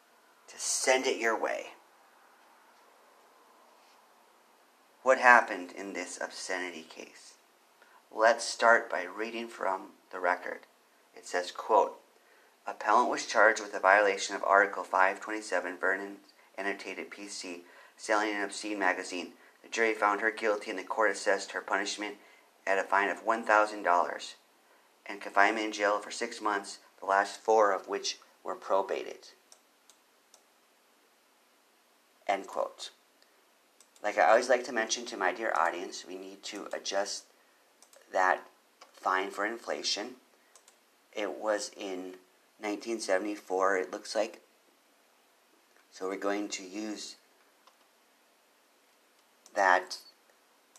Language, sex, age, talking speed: English, male, 40-59, 115 wpm